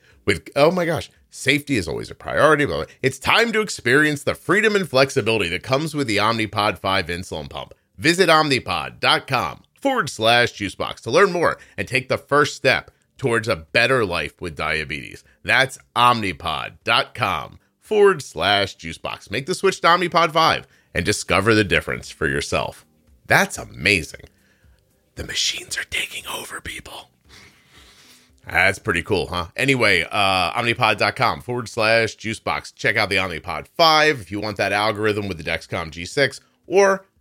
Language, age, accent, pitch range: English, 30-49, American, 95-145 Hz